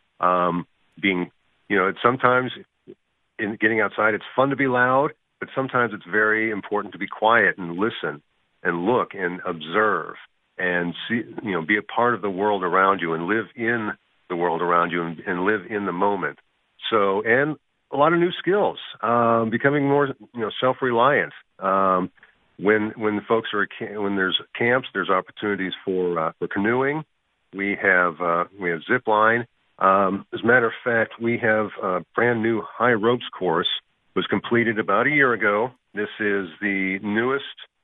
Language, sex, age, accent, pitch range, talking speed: English, male, 50-69, American, 90-115 Hz, 180 wpm